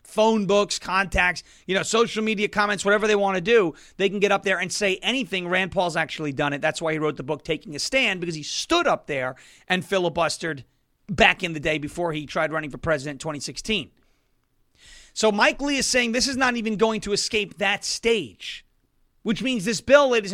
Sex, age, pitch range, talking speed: male, 30-49, 175-215 Hz, 215 wpm